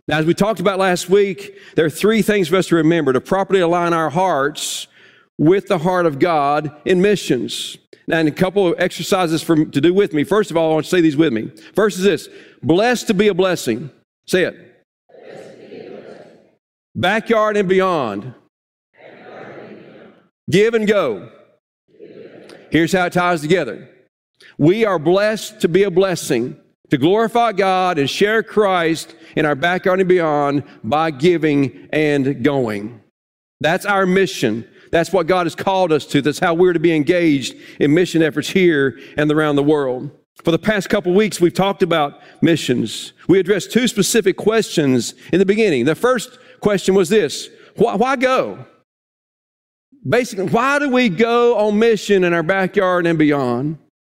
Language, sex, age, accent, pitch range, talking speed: English, male, 50-69, American, 155-205 Hz, 170 wpm